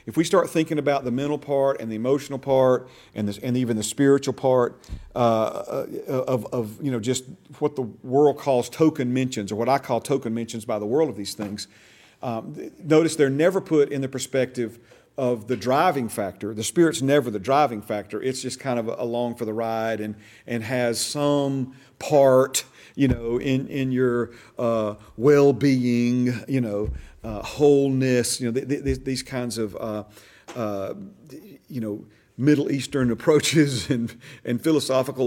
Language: English